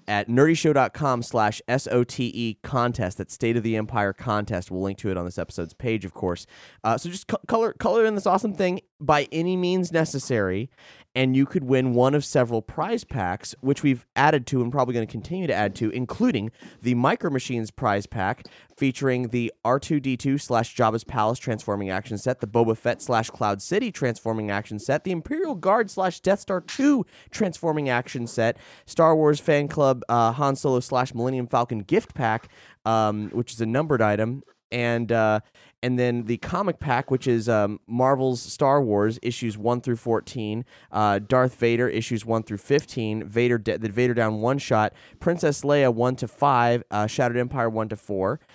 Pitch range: 110-140 Hz